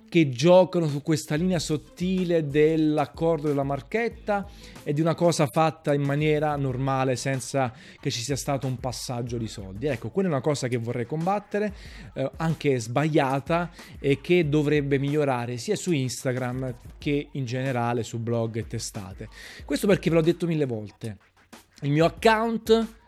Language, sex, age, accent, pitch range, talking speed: Italian, male, 30-49, native, 120-170 Hz, 160 wpm